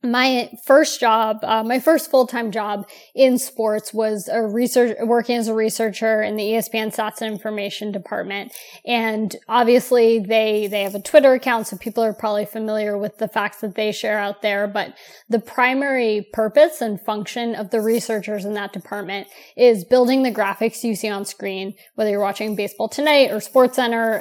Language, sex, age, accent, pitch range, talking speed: English, female, 20-39, American, 210-235 Hz, 180 wpm